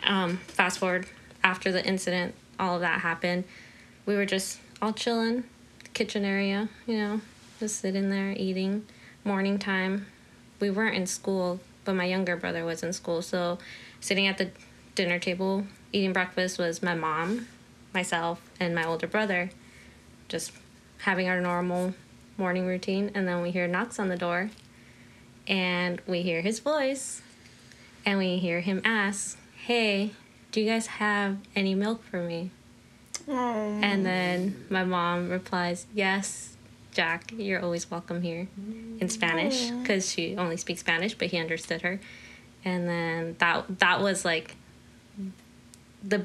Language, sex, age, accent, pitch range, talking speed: English, female, 20-39, American, 175-200 Hz, 150 wpm